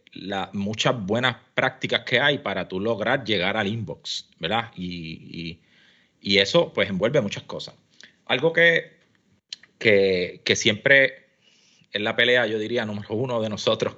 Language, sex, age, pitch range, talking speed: Spanish, male, 30-49, 105-140 Hz, 150 wpm